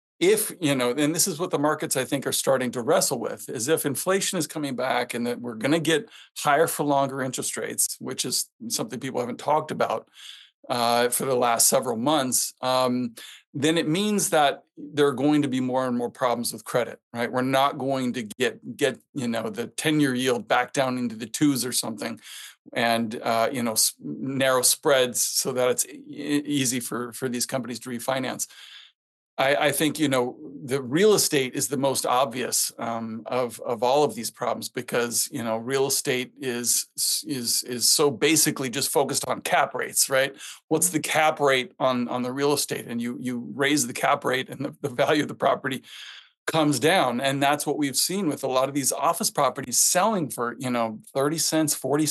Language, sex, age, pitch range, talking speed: English, male, 40-59, 125-150 Hz, 205 wpm